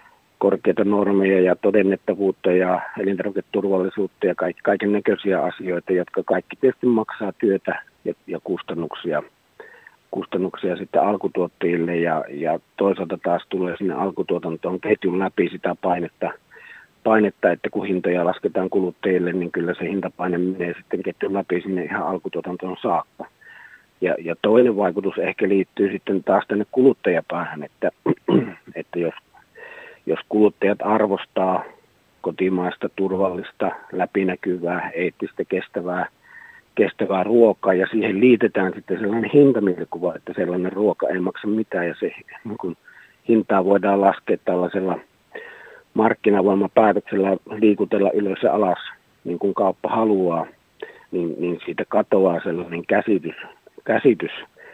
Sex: male